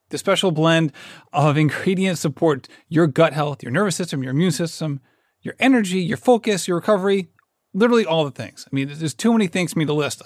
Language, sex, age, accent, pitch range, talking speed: English, male, 30-49, American, 140-185 Hz, 205 wpm